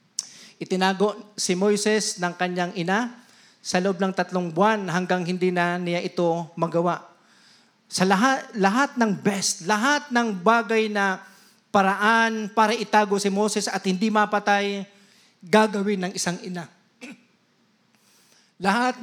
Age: 40-59